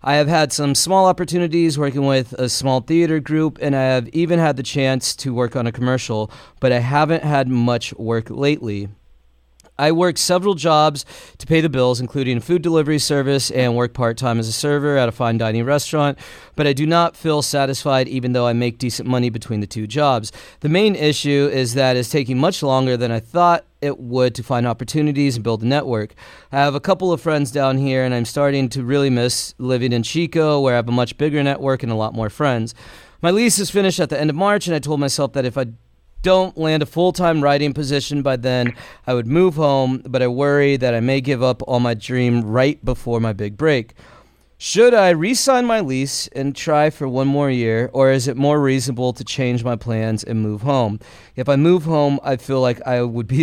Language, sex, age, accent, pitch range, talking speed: English, male, 30-49, American, 125-150 Hz, 220 wpm